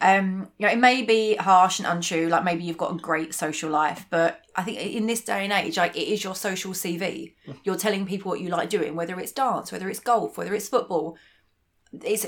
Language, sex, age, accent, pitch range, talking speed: English, female, 30-49, British, 175-220 Hz, 235 wpm